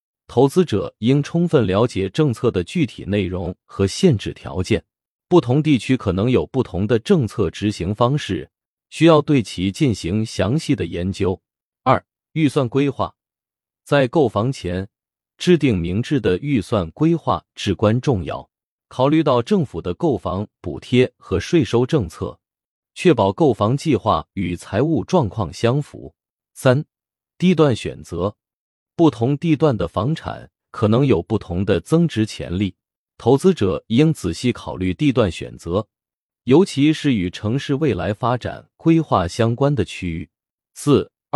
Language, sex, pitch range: Chinese, male, 95-150 Hz